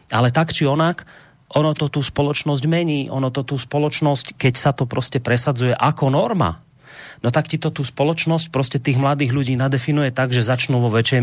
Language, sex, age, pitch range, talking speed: Slovak, male, 30-49, 120-150 Hz, 190 wpm